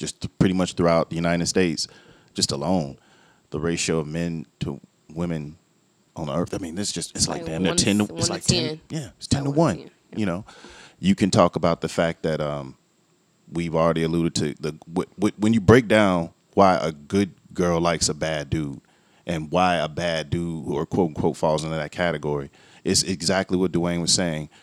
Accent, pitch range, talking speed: American, 80-100 Hz, 200 wpm